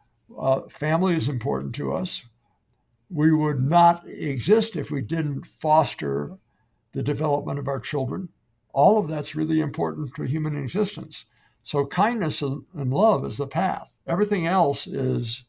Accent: American